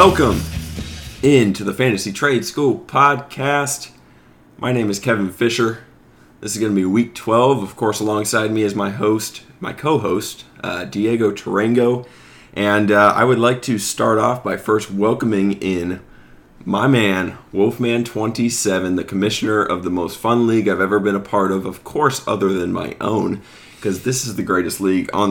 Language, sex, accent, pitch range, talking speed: English, male, American, 95-115 Hz, 170 wpm